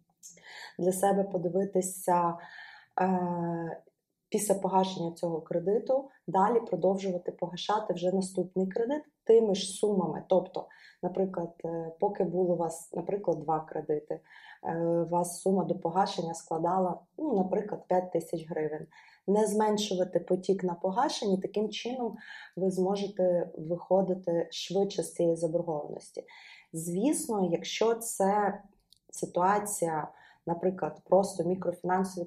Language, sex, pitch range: Ukrainian, female, 170-195 Hz